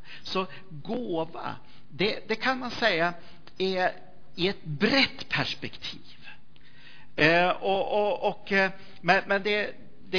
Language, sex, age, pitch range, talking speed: Swedish, male, 50-69, 145-185 Hz, 110 wpm